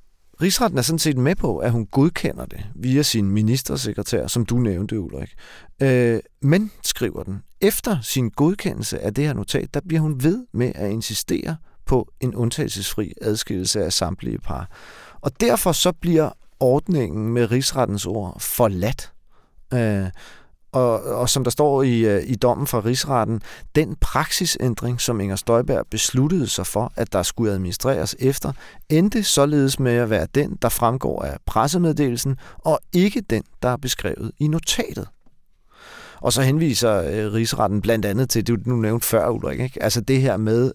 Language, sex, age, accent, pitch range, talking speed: Danish, male, 40-59, native, 110-145 Hz, 160 wpm